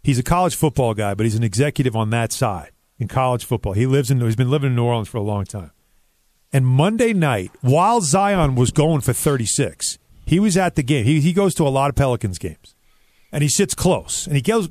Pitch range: 115-155 Hz